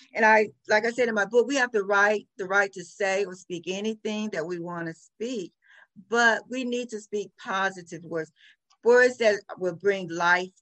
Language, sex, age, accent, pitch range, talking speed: English, female, 50-69, American, 175-230 Hz, 205 wpm